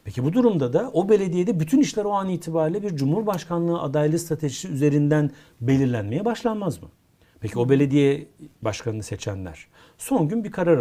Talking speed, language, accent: 155 wpm, Turkish, native